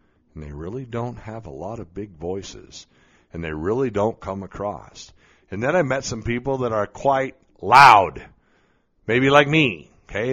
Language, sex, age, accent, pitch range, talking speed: English, male, 50-69, American, 105-140 Hz, 175 wpm